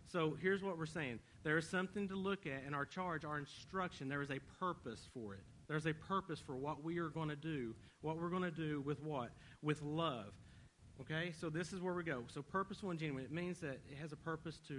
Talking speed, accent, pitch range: 245 wpm, American, 125-155 Hz